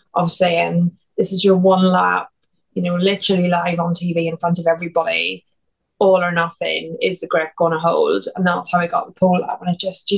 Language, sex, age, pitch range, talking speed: English, female, 20-39, 170-195 Hz, 225 wpm